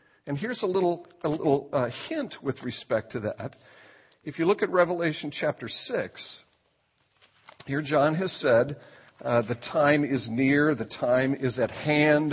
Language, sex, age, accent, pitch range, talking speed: English, male, 50-69, American, 130-165 Hz, 160 wpm